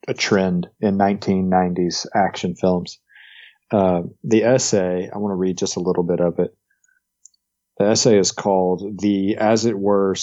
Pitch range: 95-110 Hz